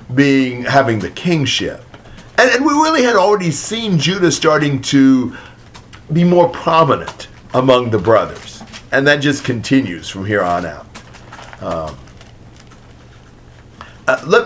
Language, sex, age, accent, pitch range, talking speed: English, male, 50-69, American, 110-150 Hz, 130 wpm